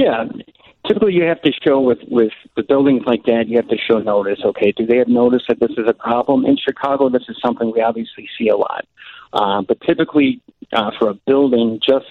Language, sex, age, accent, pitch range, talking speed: English, male, 50-69, American, 105-125 Hz, 225 wpm